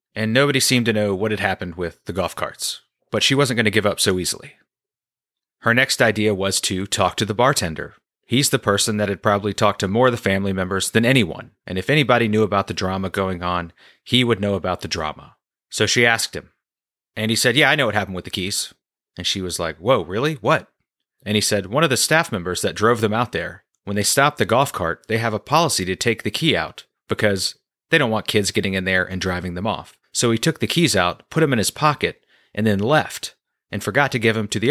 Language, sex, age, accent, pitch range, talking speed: English, male, 30-49, American, 95-115 Hz, 245 wpm